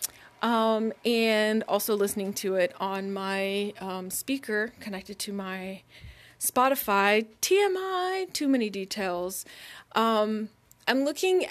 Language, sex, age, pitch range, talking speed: English, female, 30-49, 210-265 Hz, 110 wpm